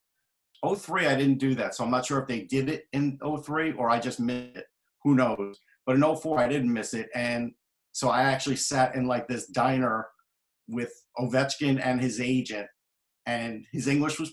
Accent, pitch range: American, 120-140 Hz